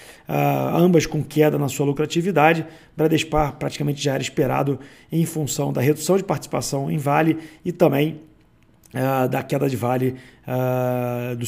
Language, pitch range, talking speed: Portuguese, 140-170 Hz, 135 wpm